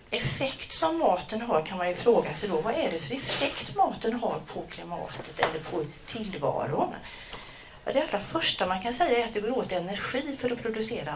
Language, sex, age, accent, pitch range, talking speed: Swedish, female, 40-59, native, 185-240 Hz, 200 wpm